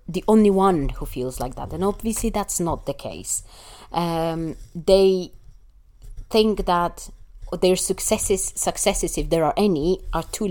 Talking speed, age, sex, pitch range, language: 150 wpm, 30-49, female, 145-185 Hz, English